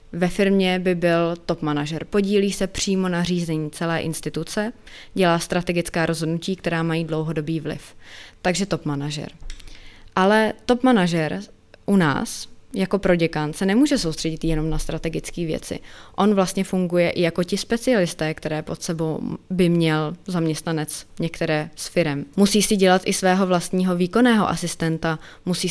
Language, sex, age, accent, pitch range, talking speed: Czech, female, 20-39, native, 160-185 Hz, 145 wpm